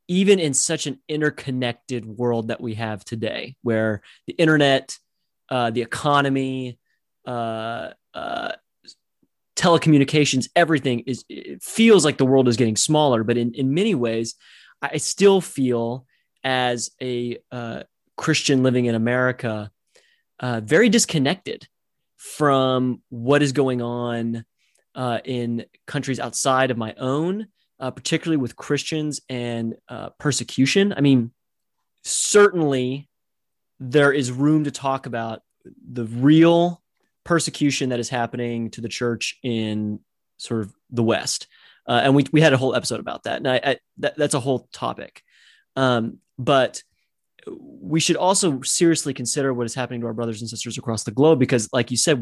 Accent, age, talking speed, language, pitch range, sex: American, 30-49, 150 wpm, English, 120-145 Hz, male